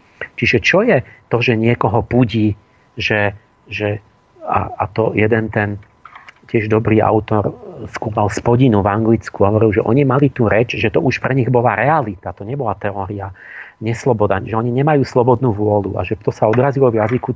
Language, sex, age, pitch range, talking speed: Slovak, male, 40-59, 105-125 Hz, 175 wpm